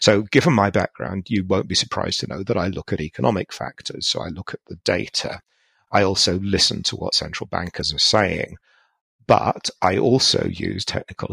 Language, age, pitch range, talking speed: English, 50-69, 90-110 Hz, 190 wpm